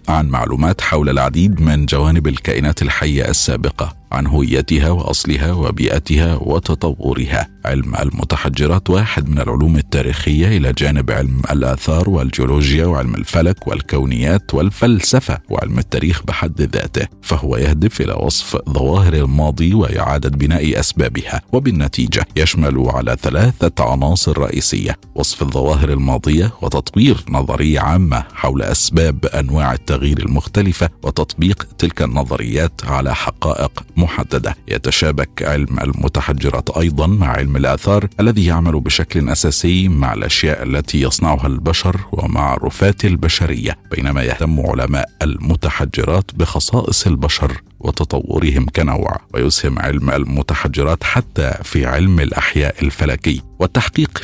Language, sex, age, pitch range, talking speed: Arabic, male, 50-69, 70-90 Hz, 110 wpm